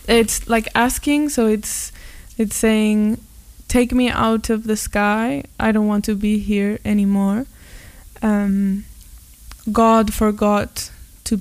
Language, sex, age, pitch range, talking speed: English, female, 10-29, 195-220 Hz, 125 wpm